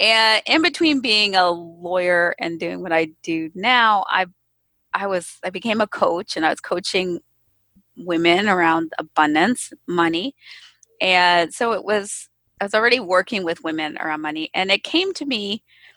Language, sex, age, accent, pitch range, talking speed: English, female, 20-39, American, 170-225 Hz, 170 wpm